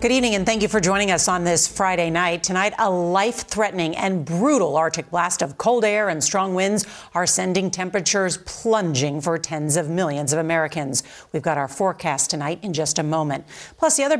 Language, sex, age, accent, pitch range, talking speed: English, female, 40-59, American, 165-210 Hz, 200 wpm